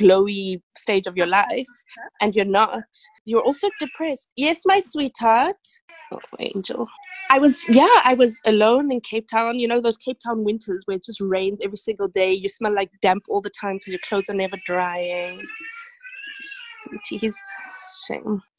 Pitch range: 195-245 Hz